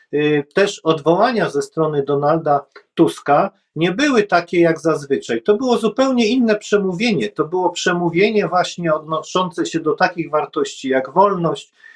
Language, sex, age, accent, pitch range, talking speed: Polish, male, 50-69, native, 155-200 Hz, 135 wpm